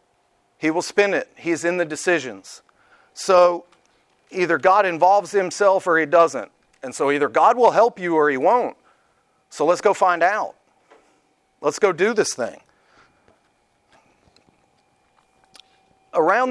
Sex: male